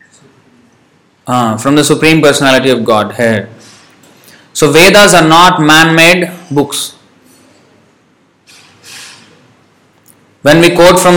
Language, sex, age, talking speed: English, male, 20-39, 90 wpm